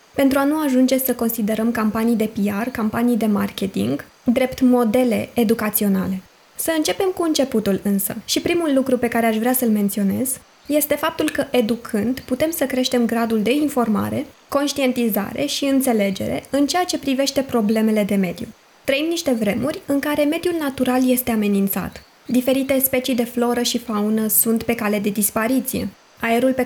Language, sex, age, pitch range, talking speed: Romanian, female, 20-39, 220-265 Hz, 160 wpm